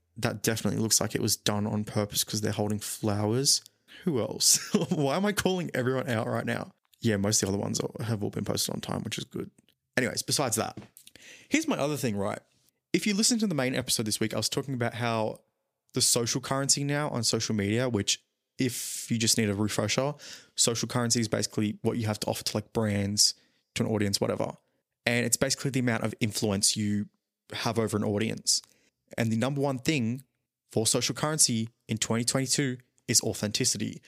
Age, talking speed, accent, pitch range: 20-39, 200 wpm, Australian, 105-125 Hz